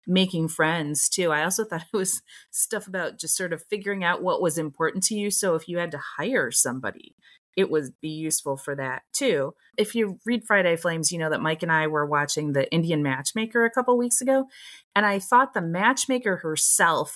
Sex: female